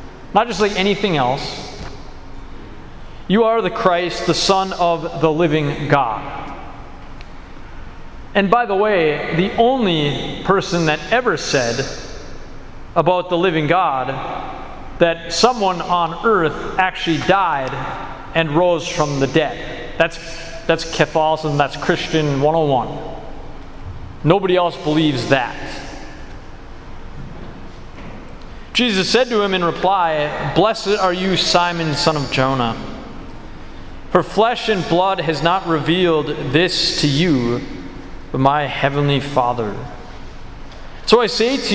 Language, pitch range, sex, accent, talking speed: English, 140-185 Hz, male, American, 115 wpm